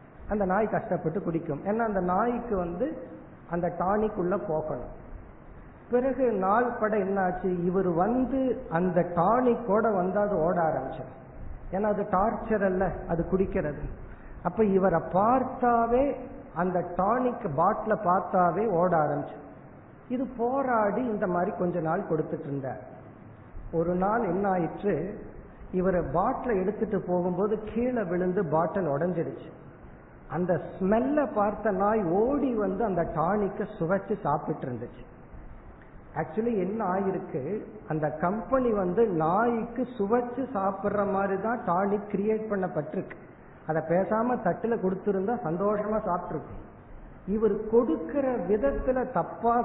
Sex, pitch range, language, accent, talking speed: male, 165-220 Hz, Tamil, native, 100 wpm